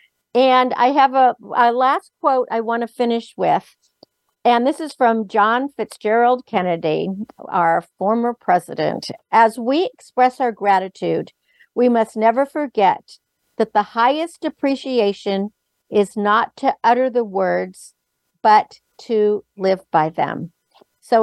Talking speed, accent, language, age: 135 wpm, American, English, 60-79